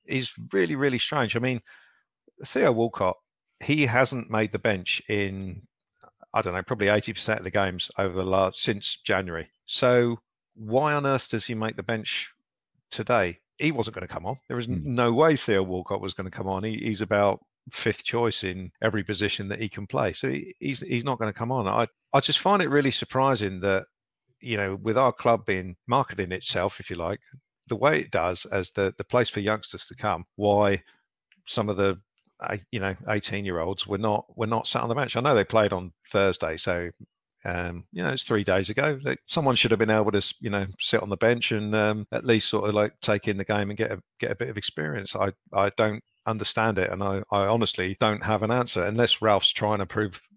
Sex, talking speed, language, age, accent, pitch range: male, 225 wpm, English, 50-69, British, 100-115 Hz